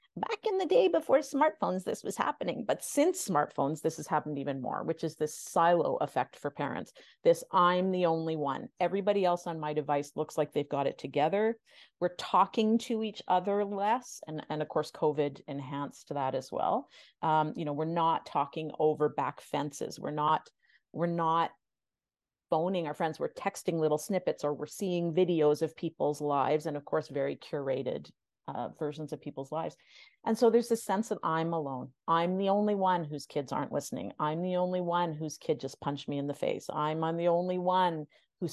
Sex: female